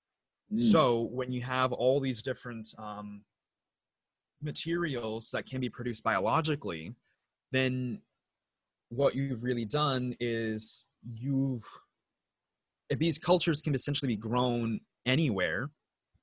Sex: male